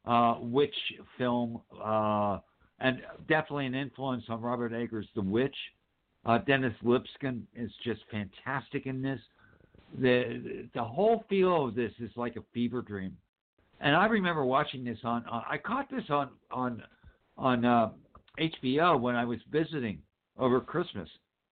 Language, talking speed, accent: English, 150 wpm, American